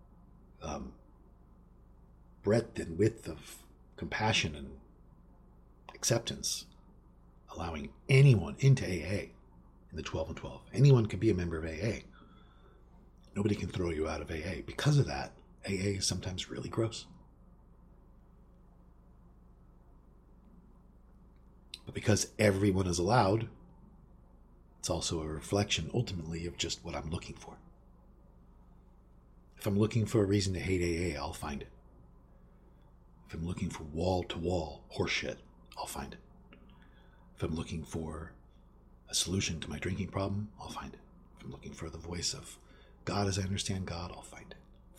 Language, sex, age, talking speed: English, male, 50-69, 140 wpm